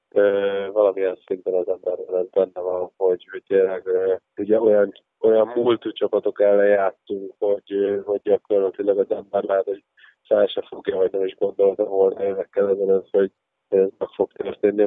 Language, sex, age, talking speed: Hungarian, male, 20-39, 140 wpm